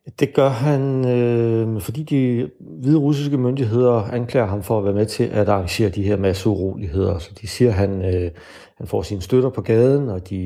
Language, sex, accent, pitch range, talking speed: Danish, male, native, 95-120 Hz, 205 wpm